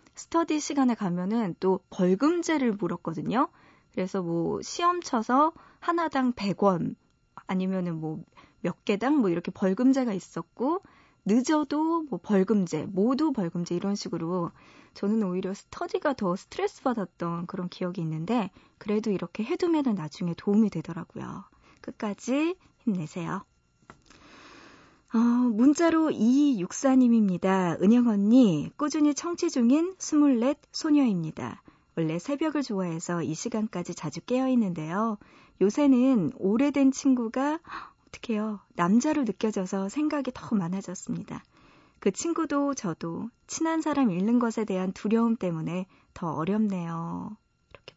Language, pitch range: Korean, 185-280 Hz